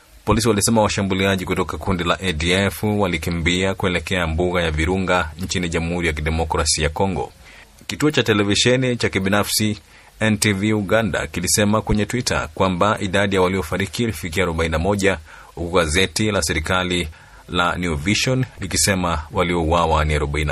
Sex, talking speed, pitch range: male, 130 wpm, 90-105 Hz